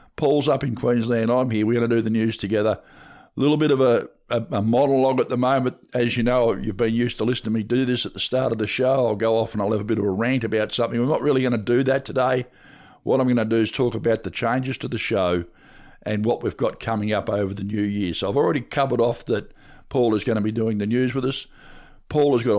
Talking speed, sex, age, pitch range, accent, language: 280 wpm, male, 50-69, 110-120 Hz, Australian, English